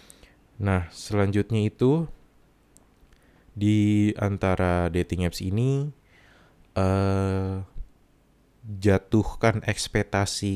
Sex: male